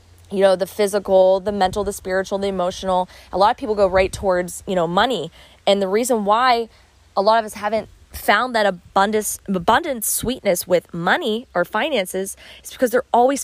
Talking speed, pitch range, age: 190 wpm, 170-215 Hz, 20-39